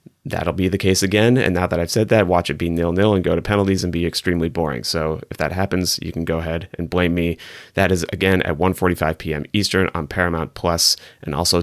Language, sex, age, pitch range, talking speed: English, male, 30-49, 85-100 Hz, 245 wpm